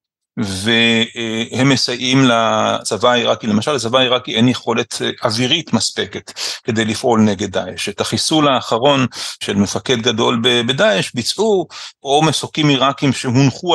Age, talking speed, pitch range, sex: 40-59, 120 wpm, 115-145 Hz, male